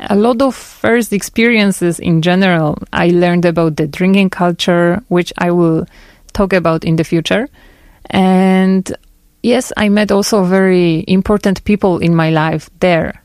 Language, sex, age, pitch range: Korean, female, 30-49, 175-210 Hz